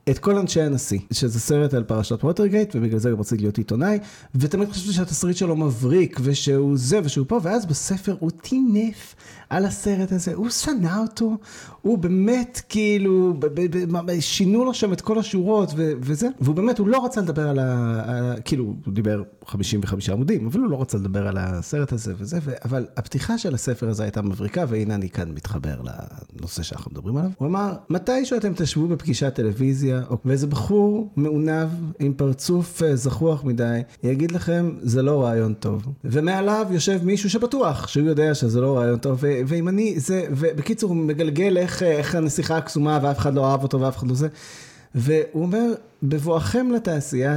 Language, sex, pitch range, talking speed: Hebrew, male, 125-185 Hz, 170 wpm